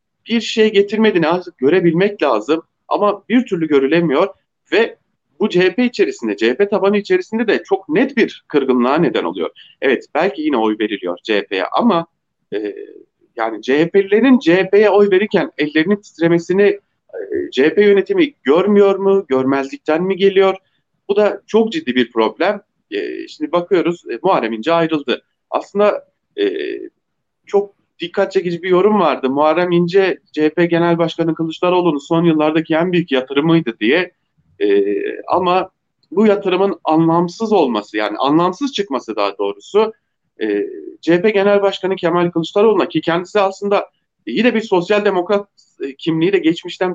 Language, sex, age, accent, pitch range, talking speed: German, male, 40-59, Turkish, 165-220 Hz, 135 wpm